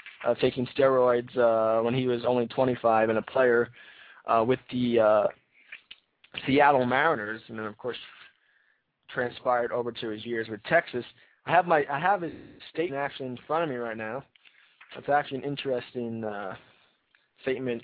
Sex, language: male, English